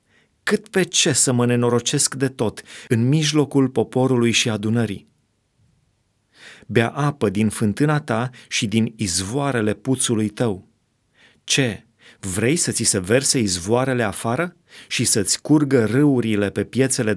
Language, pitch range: Romanian, 110-140 Hz